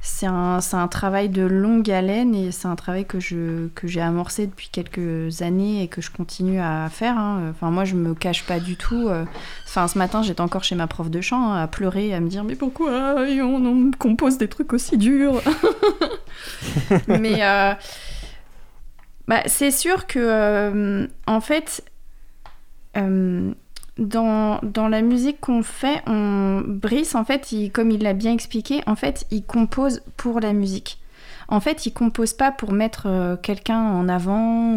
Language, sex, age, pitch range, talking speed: French, female, 20-39, 185-230 Hz, 180 wpm